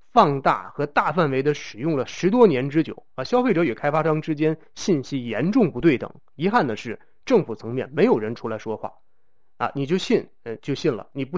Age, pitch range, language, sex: 30-49, 130-185 Hz, Chinese, male